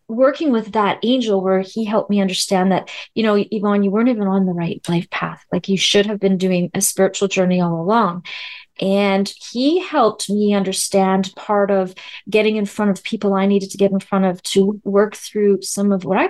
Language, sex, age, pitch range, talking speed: English, female, 30-49, 185-215 Hz, 215 wpm